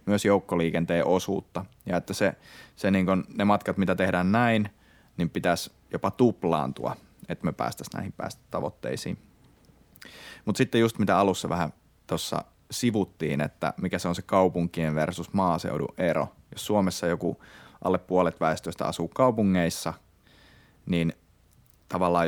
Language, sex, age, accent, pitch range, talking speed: Finnish, male, 30-49, native, 85-105 Hz, 125 wpm